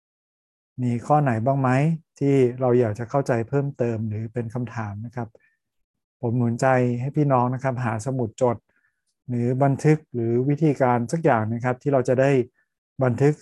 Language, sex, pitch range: Thai, male, 115-135 Hz